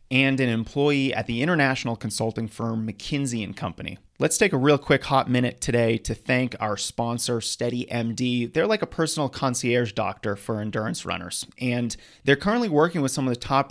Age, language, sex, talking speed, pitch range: 30-49, English, male, 185 wpm, 110-135 Hz